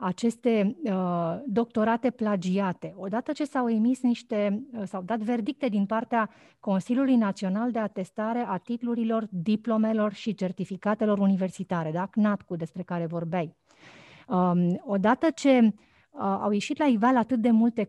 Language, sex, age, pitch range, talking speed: Romanian, female, 30-49, 195-255 Hz, 140 wpm